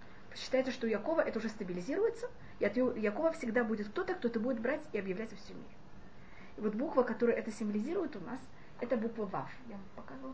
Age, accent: 30-49, native